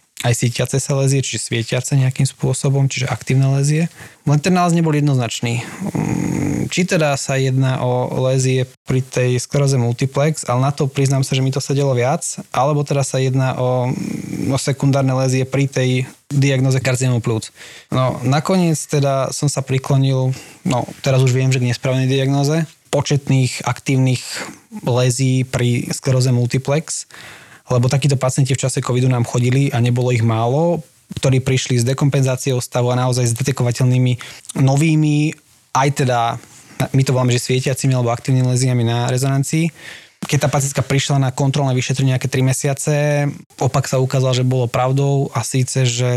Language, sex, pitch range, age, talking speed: Slovak, male, 125-140 Hz, 20-39, 155 wpm